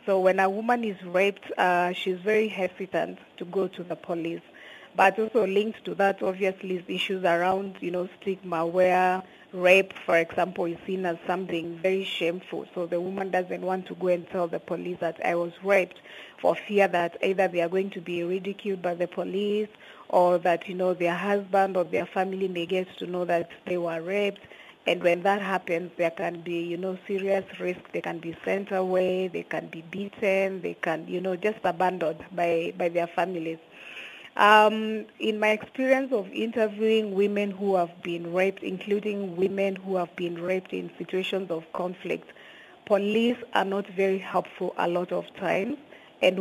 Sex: female